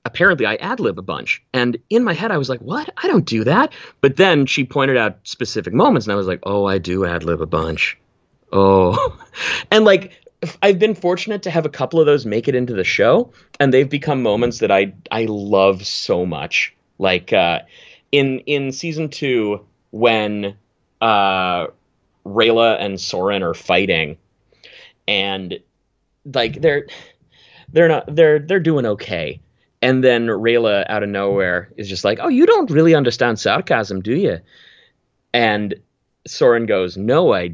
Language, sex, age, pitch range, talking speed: English, male, 30-49, 110-180 Hz, 170 wpm